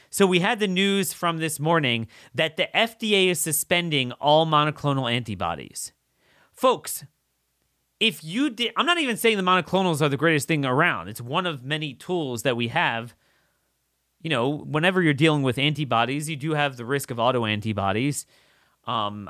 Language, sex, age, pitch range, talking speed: English, male, 30-49, 120-175 Hz, 170 wpm